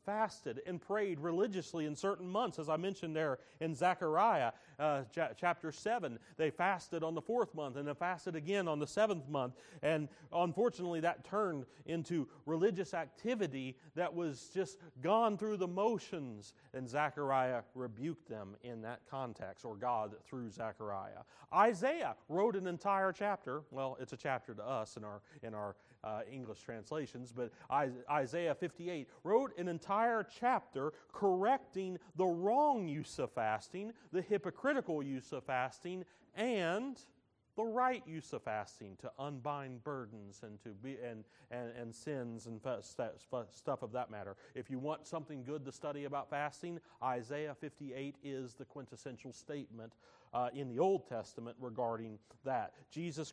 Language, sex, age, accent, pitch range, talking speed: English, male, 40-59, American, 130-185 Hz, 155 wpm